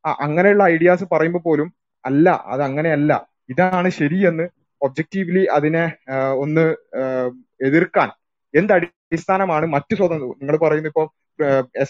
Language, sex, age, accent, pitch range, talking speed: Malayalam, male, 20-39, native, 145-175 Hz, 105 wpm